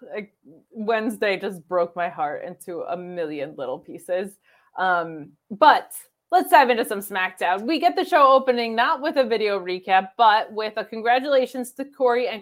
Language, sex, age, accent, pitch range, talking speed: English, female, 20-39, American, 185-235 Hz, 170 wpm